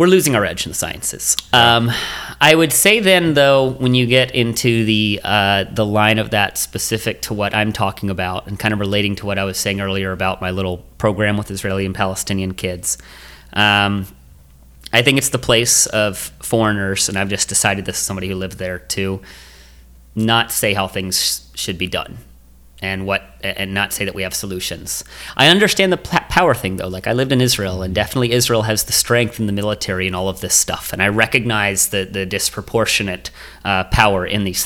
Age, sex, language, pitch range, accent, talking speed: 30-49, male, English, 95-110 Hz, American, 210 wpm